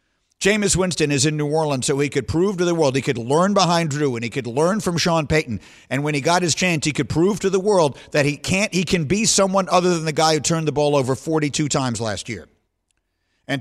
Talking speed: 255 wpm